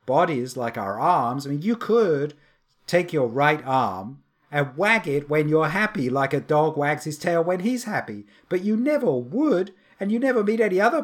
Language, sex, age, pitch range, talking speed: English, male, 50-69, 125-175 Hz, 200 wpm